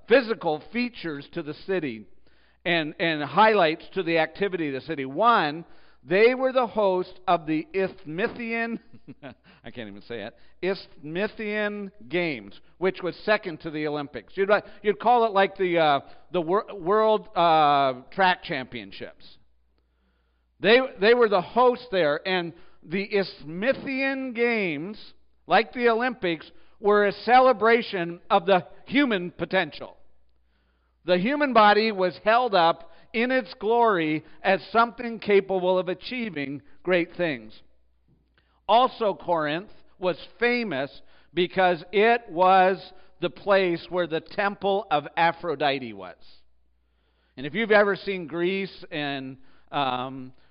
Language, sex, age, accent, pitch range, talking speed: English, male, 50-69, American, 150-210 Hz, 125 wpm